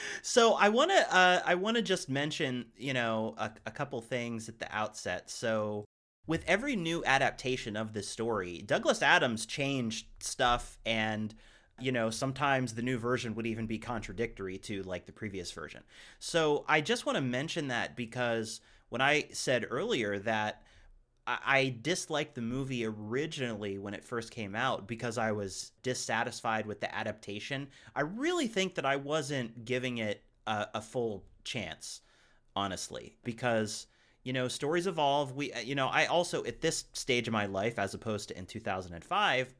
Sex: male